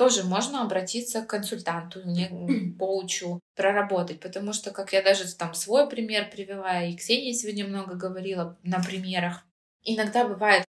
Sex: female